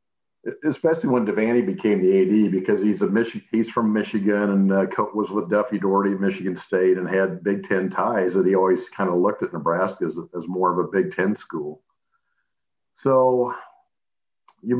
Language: English